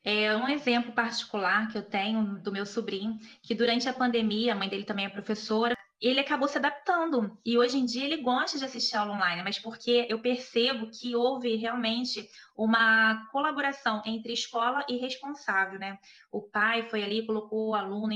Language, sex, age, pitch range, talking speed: Portuguese, female, 20-39, 210-250 Hz, 180 wpm